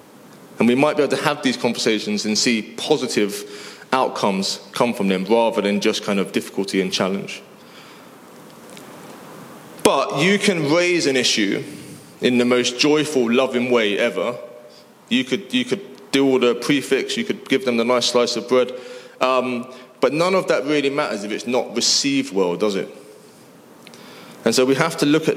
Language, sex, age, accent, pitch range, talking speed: English, male, 20-39, British, 115-150 Hz, 175 wpm